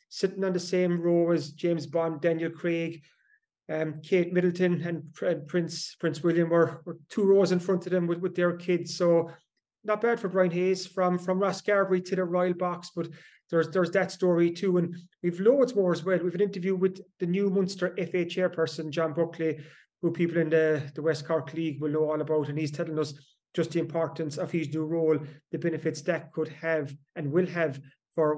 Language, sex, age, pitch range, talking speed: English, male, 30-49, 155-180 Hz, 210 wpm